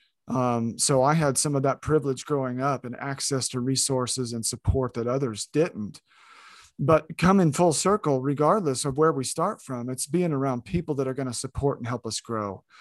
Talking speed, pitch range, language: 200 wpm, 130-160 Hz, English